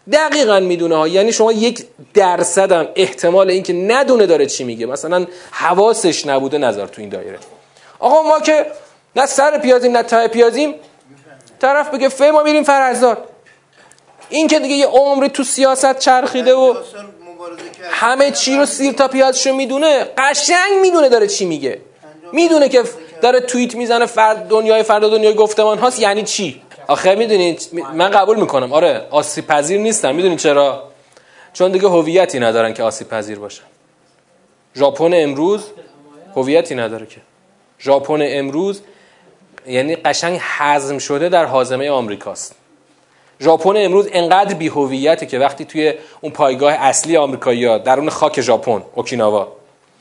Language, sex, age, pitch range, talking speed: Persian, male, 30-49, 155-260 Hz, 145 wpm